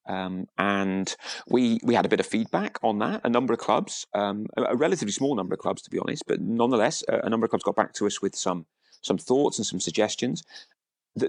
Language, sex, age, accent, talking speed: English, male, 30-49, British, 240 wpm